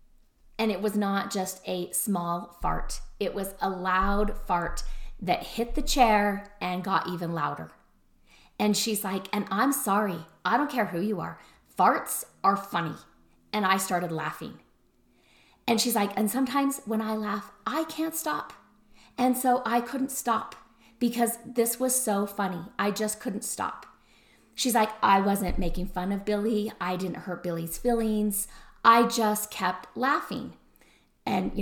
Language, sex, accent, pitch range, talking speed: English, female, American, 190-240 Hz, 160 wpm